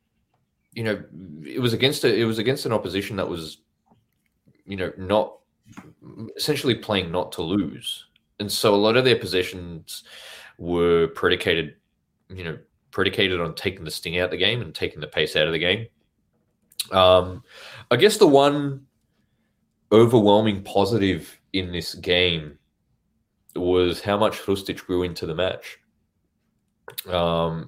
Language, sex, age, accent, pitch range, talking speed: English, male, 20-39, Australian, 85-110 Hz, 145 wpm